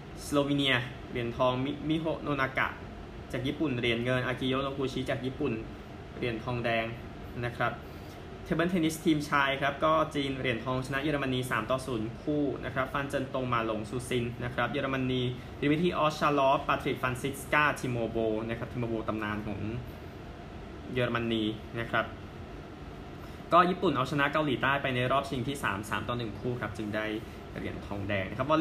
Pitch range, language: 110-135 Hz, Thai